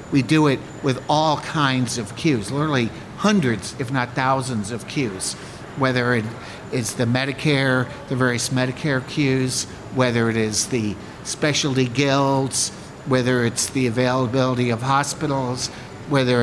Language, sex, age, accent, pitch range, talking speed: English, male, 60-79, American, 120-155 Hz, 130 wpm